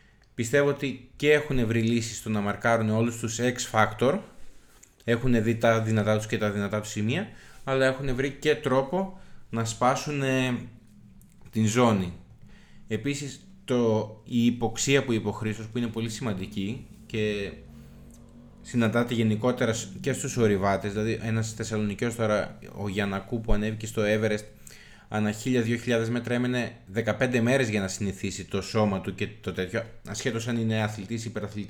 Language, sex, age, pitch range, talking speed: Greek, male, 20-39, 105-125 Hz, 150 wpm